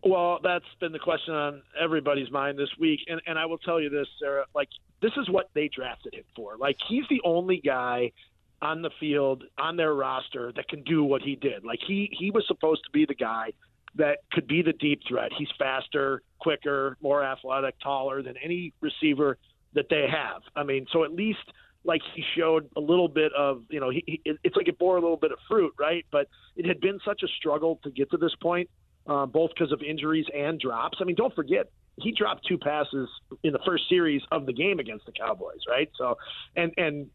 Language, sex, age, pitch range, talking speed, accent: English, male, 40-59, 140-170 Hz, 225 wpm, American